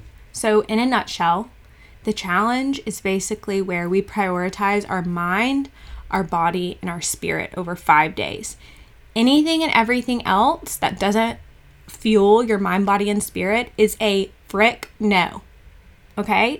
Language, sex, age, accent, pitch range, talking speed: English, female, 20-39, American, 185-230 Hz, 135 wpm